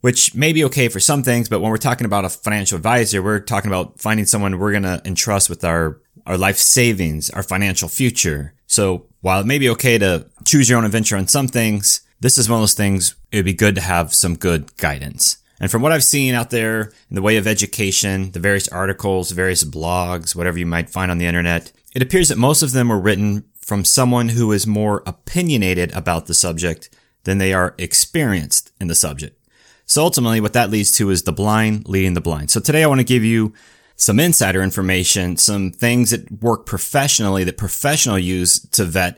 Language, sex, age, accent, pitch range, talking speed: English, male, 30-49, American, 90-115 Hz, 215 wpm